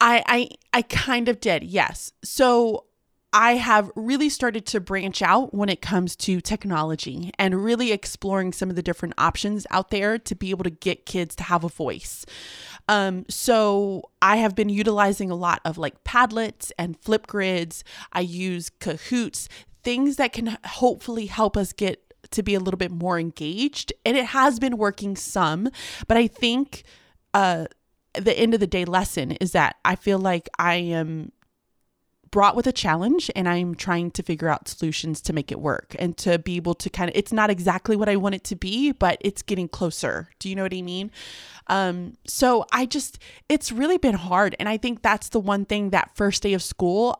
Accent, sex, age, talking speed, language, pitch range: American, female, 20-39, 195 wpm, English, 180-230 Hz